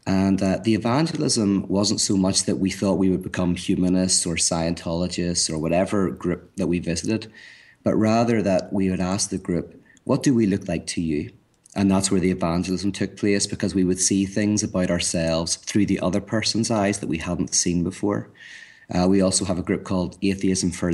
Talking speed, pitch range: 200 wpm, 90-100 Hz